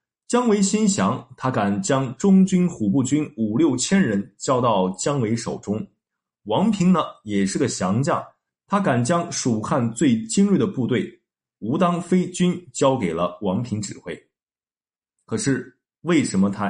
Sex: male